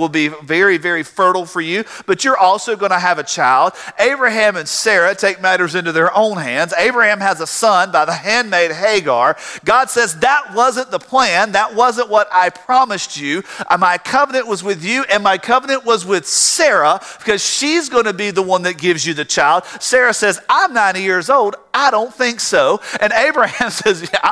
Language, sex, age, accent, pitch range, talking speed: English, male, 40-59, American, 160-250 Hz, 200 wpm